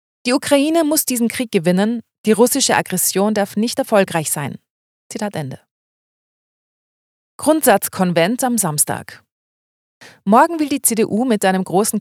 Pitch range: 170-225 Hz